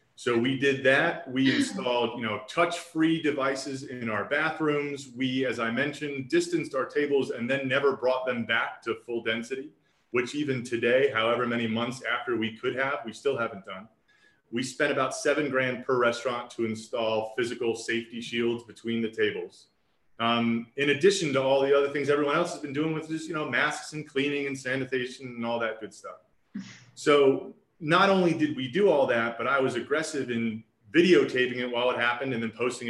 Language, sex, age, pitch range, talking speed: English, male, 30-49, 115-145 Hz, 195 wpm